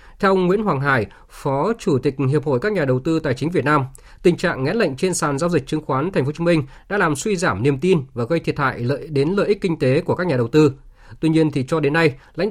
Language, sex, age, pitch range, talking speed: Vietnamese, male, 20-39, 135-175 Hz, 295 wpm